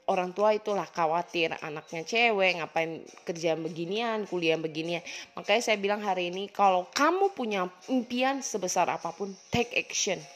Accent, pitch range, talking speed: Indonesian, 170-210 Hz, 140 wpm